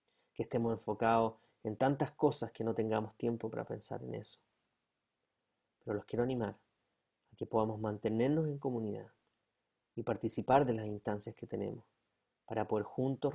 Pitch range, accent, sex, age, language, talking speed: 105-115 Hz, Argentinian, male, 30-49, Spanish, 155 wpm